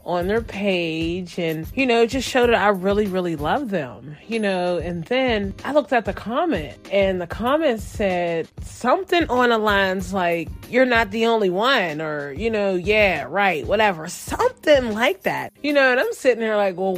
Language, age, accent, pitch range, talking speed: English, 20-39, American, 175-230 Hz, 190 wpm